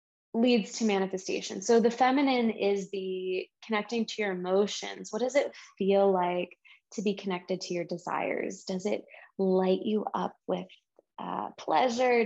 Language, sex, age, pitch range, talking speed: English, female, 20-39, 185-225 Hz, 150 wpm